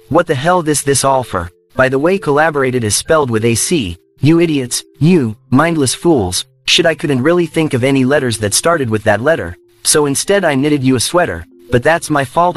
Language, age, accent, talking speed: English, 30-49, American, 210 wpm